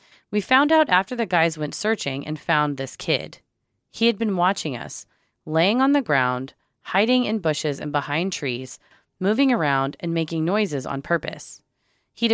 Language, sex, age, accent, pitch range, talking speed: English, female, 30-49, American, 140-205 Hz, 170 wpm